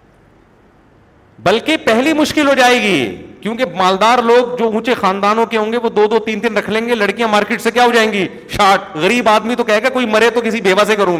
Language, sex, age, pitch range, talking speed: Urdu, male, 40-59, 135-210 Hz, 230 wpm